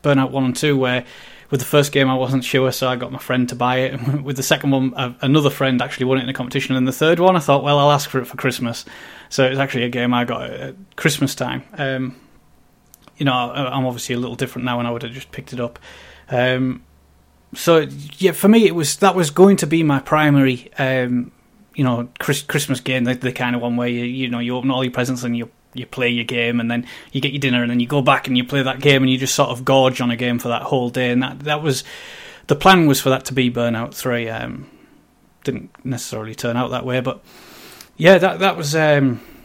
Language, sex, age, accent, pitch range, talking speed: English, male, 20-39, British, 125-145 Hz, 255 wpm